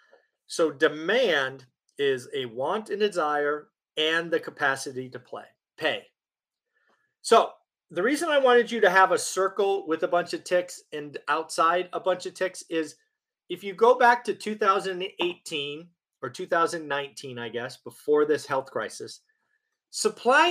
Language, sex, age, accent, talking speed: English, male, 30-49, American, 145 wpm